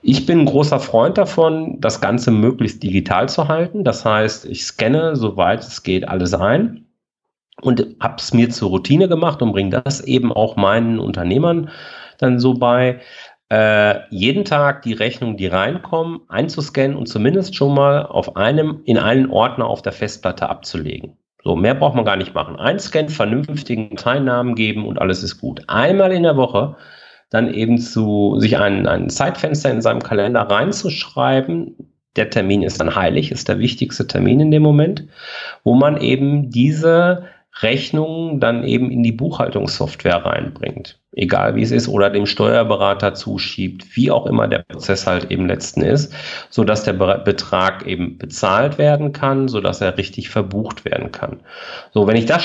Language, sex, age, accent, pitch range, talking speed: German, male, 40-59, German, 105-145 Hz, 165 wpm